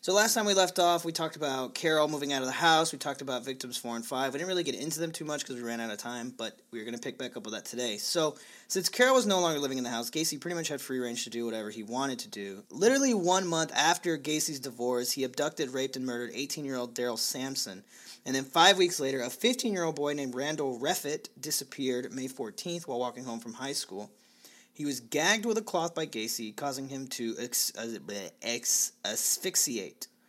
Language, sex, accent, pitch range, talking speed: English, male, American, 120-165 Hz, 240 wpm